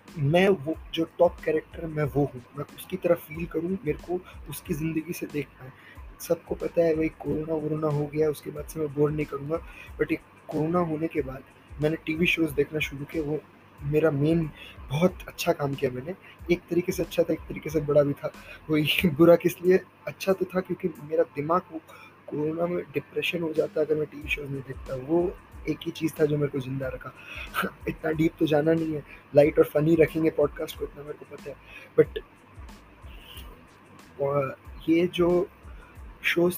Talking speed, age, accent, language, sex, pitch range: 190 wpm, 20-39, native, Hindi, male, 150-170 Hz